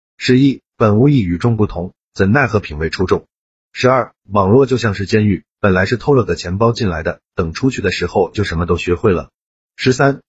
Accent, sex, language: native, male, Chinese